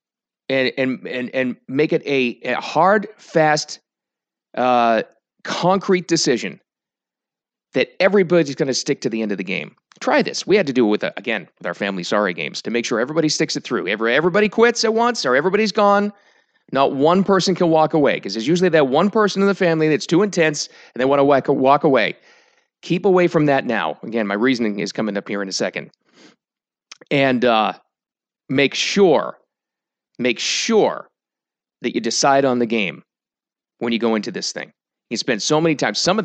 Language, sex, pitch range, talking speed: English, male, 125-170 Hz, 190 wpm